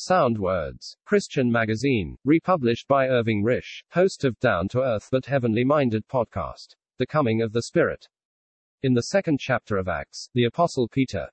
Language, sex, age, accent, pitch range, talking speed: English, male, 40-59, British, 115-140 Hz, 150 wpm